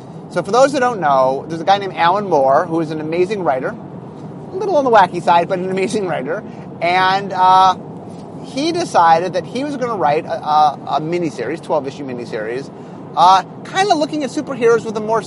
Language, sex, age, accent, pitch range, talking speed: English, male, 30-49, American, 160-215 Hz, 200 wpm